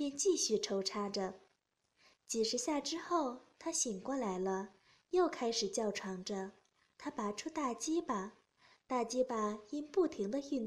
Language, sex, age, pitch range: Chinese, female, 20-39, 215-285 Hz